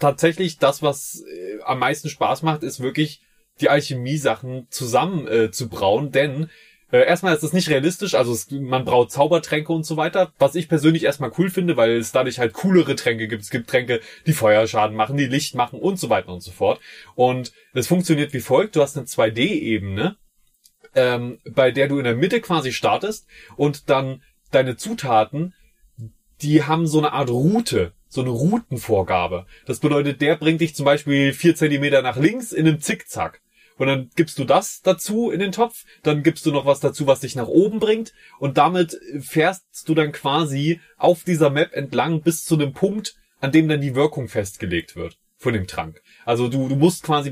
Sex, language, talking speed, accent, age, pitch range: male, German, 195 wpm, German, 30-49, 130-165 Hz